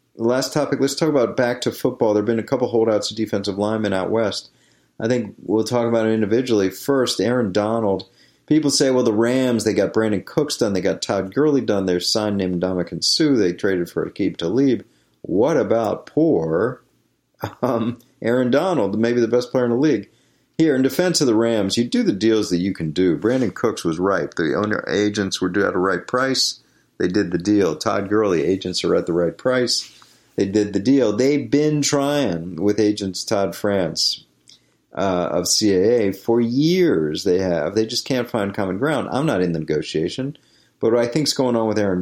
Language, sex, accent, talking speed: English, male, American, 205 wpm